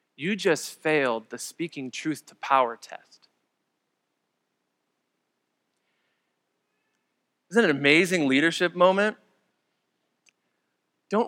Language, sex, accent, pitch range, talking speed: English, male, American, 155-200 Hz, 85 wpm